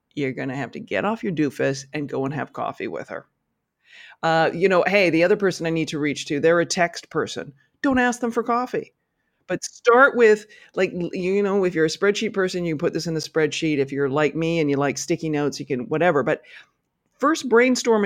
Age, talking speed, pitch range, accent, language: 40-59, 230 wpm, 155-195 Hz, American, English